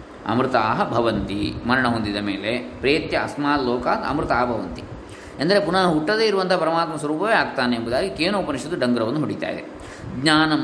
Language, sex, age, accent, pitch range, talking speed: Kannada, male, 20-39, native, 130-175 Hz, 120 wpm